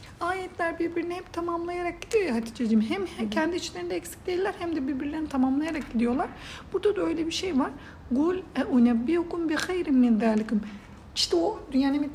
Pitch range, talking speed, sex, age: 245-330 Hz, 165 wpm, female, 60-79